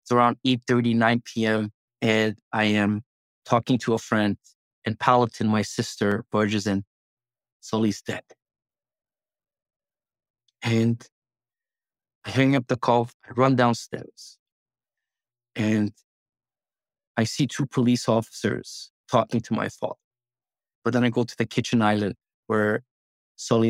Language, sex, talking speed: English, male, 120 wpm